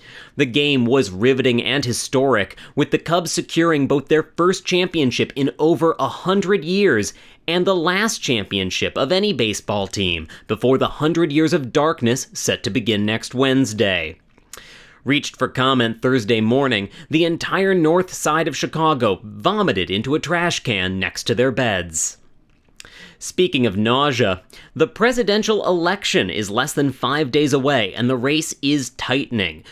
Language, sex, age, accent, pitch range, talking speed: English, male, 30-49, American, 120-160 Hz, 150 wpm